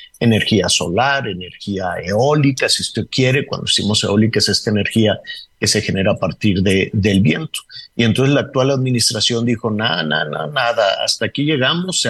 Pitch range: 105-140 Hz